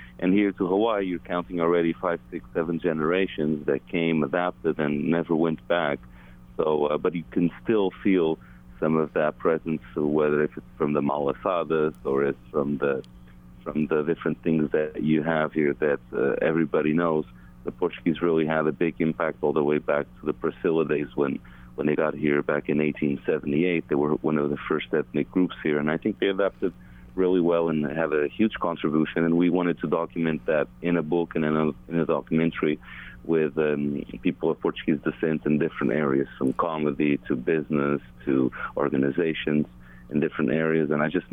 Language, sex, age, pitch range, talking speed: English, male, 40-59, 70-80 Hz, 190 wpm